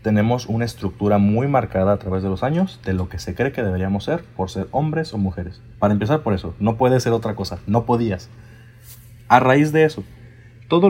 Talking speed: 215 wpm